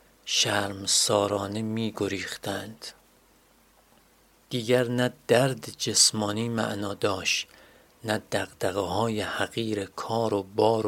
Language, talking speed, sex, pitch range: Persian, 85 wpm, male, 100-115 Hz